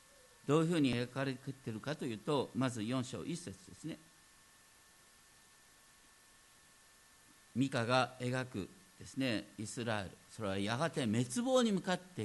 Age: 50-69